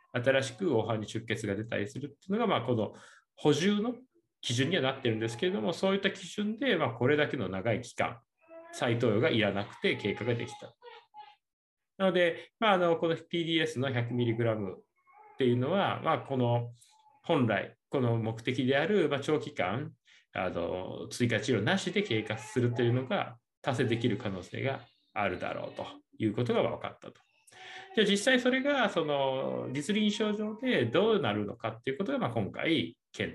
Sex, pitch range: male, 120-195 Hz